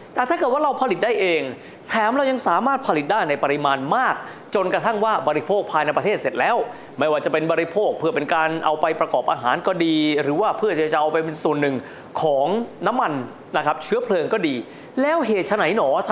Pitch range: 155-245 Hz